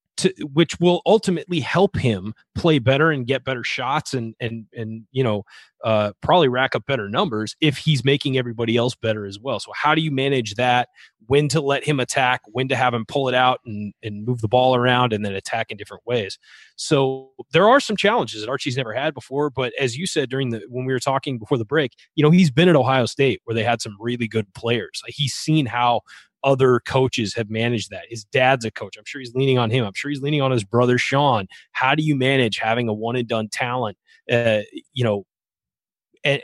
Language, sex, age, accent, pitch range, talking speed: English, male, 30-49, American, 115-140 Hz, 230 wpm